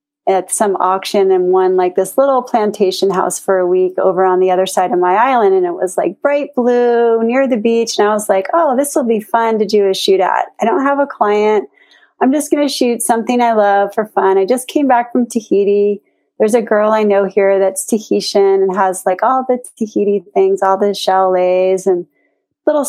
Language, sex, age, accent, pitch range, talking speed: English, female, 30-49, American, 195-245 Hz, 225 wpm